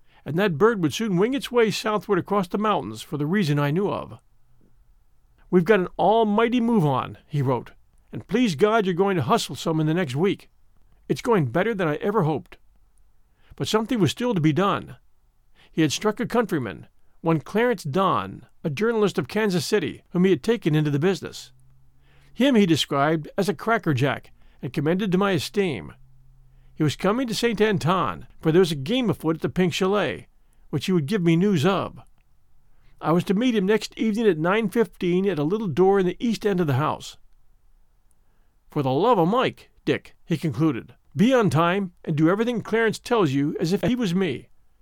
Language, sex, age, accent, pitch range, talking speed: English, male, 50-69, American, 145-215 Hz, 195 wpm